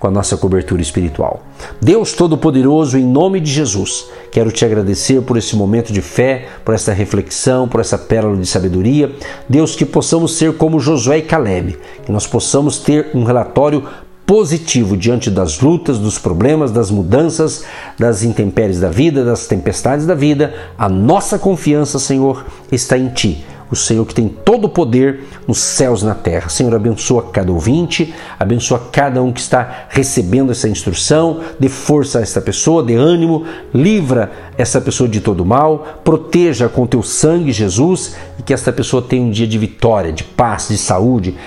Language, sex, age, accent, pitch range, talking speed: Portuguese, male, 50-69, Brazilian, 110-150 Hz, 170 wpm